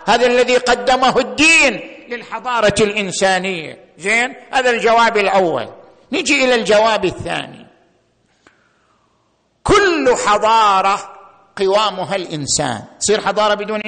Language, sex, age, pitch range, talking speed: Arabic, male, 50-69, 205-270 Hz, 90 wpm